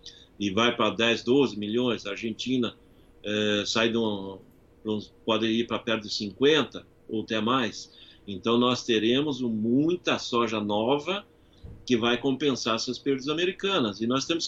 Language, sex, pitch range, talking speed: Portuguese, male, 105-125 Hz, 135 wpm